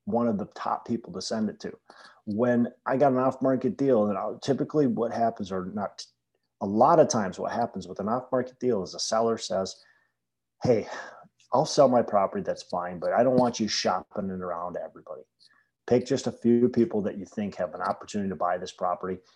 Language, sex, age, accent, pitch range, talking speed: English, male, 30-49, American, 90-120 Hz, 200 wpm